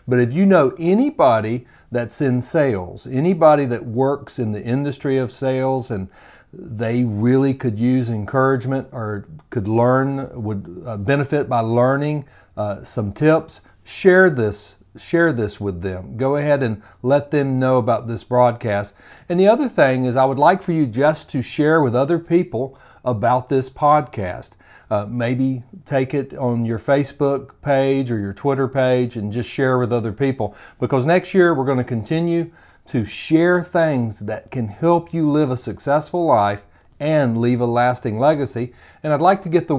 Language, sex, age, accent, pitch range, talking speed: English, male, 40-59, American, 115-145 Hz, 170 wpm